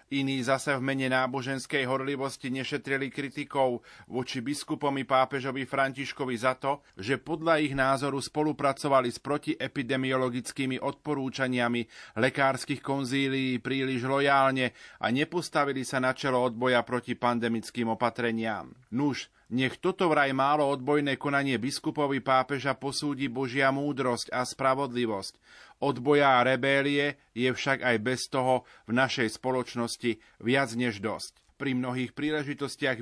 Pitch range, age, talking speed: 130-145 Hz, 30-49, 120 wpm